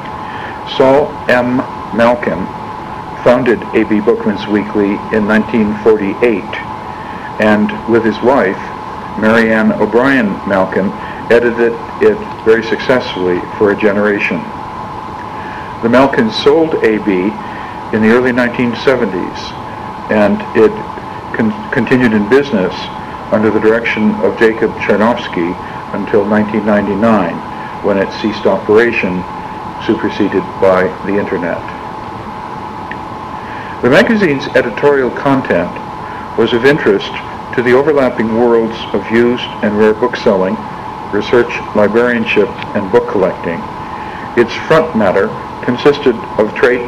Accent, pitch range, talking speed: American, 105-120 Hz, 100 wpm